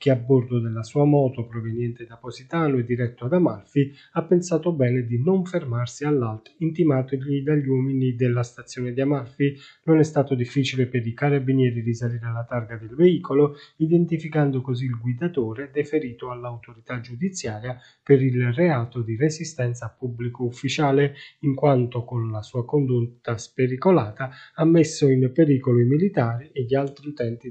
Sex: male